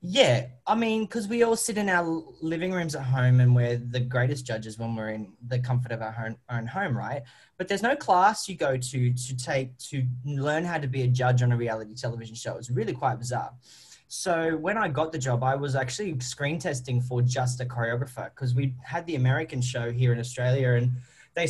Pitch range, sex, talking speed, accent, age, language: 125-160 Hz, male, 220 wpm, Australian, 20-39, English